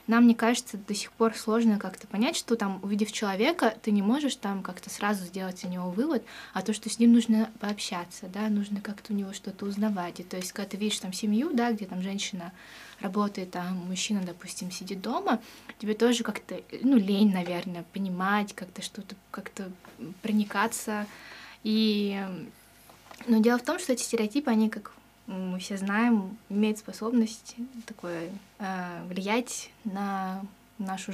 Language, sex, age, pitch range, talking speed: Russian, female, 20-39, 195-225 Hz, 165 wpm